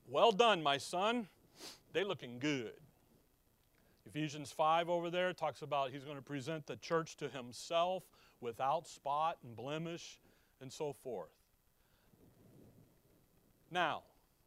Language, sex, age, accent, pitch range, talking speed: English, male, 40-59, American, 145-215 Hz, 120 wpm